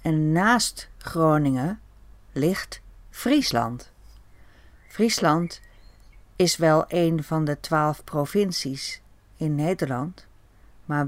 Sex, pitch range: female, 120-190 Hz